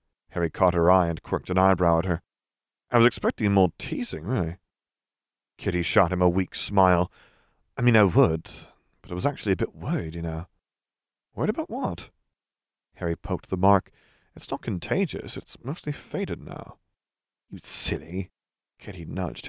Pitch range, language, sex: 85-115 Hz, English, male